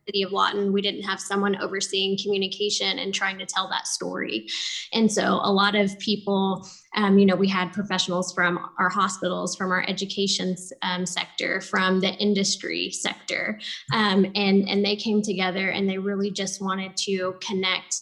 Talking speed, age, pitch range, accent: 175 wpm, 10-29, 185-205 Hz, American